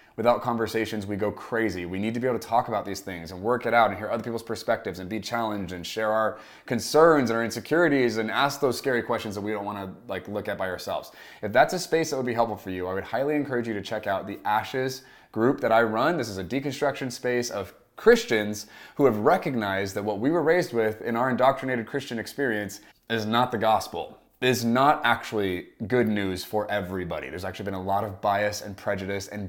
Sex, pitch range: male, 100-125 Hz